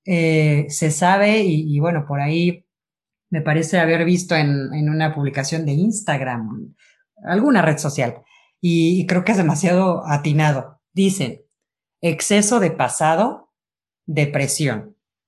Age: 30-49